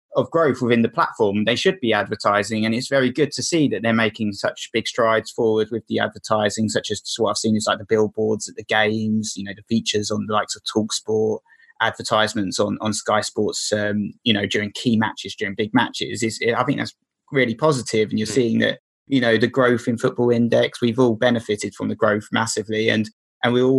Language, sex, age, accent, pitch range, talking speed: English, male, 20-39, British, 110-125 Hz, 225 wpm